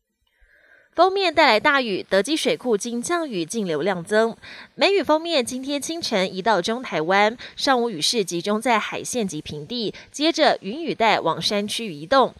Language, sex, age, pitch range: Chinese, female, 20-39, 195-275 Hz